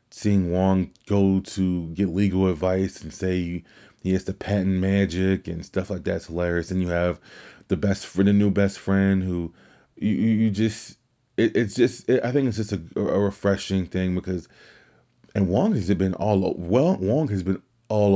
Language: English